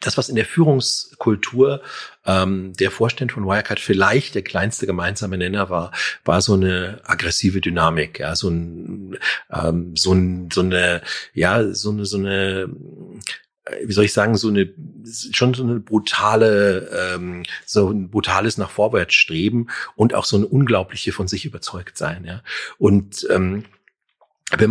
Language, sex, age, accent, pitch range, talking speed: German, male, 40-59, German, 95-110 Hz, 145 wpm